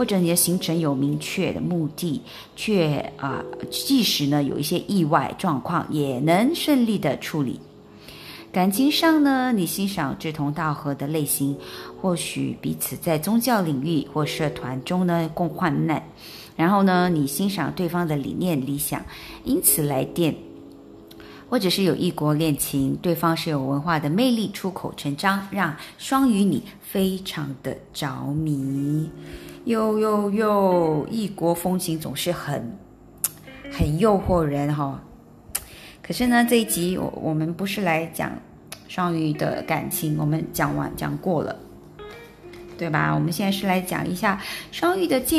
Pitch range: 145-200 Hz